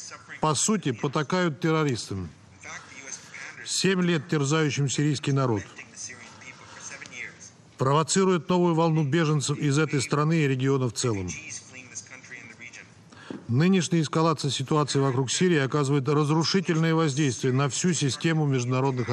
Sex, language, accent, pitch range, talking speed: male, Russian, native, 120-160 Hz, 100 wpm